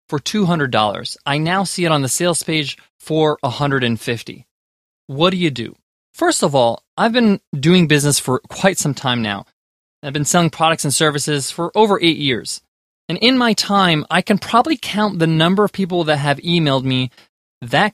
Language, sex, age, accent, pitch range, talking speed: English, male, 20-39, American, 150-200 Hz, 185 wpm